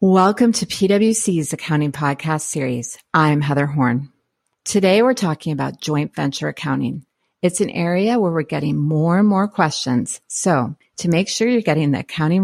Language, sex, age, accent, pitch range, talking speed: English, female, 40-59, American, 155-200 Hz, 165 wpm